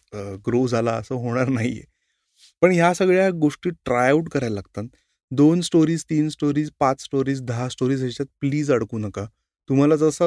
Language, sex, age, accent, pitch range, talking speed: Marathi, male, 20-39, native, 120-150 Hz, 135 wpm